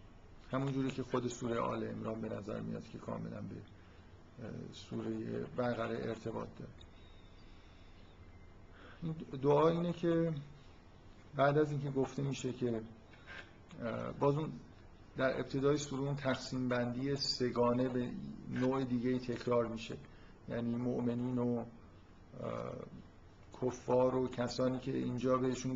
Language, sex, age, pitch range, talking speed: Persian, male, 50-69, 100-135 Hz, 110 wpm